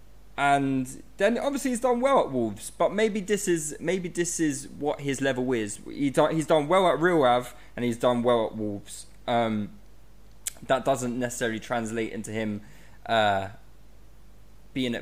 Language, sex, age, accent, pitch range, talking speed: English, male, 20-39, British, 115-155 Hz, 165 wpm